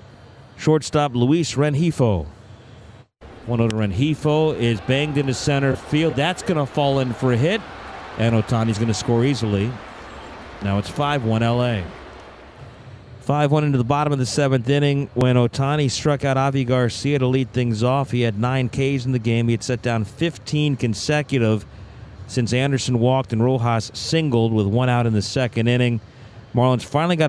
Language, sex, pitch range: English, male, 115-140 Hz